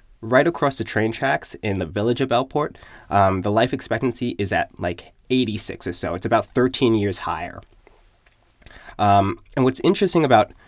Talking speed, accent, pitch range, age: 170 wpm, American, 100-125 Hz, 20-39